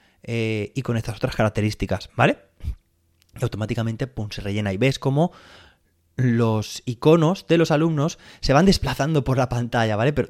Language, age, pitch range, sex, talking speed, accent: Spanish, 20-39, 110-145 Hz, male, 165 wpm, Spanish